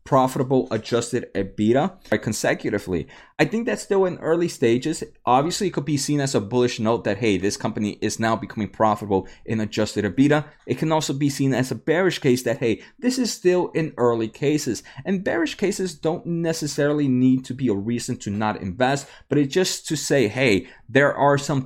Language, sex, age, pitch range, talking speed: English, male, 20-39, 115-155 Hz, 195 wpm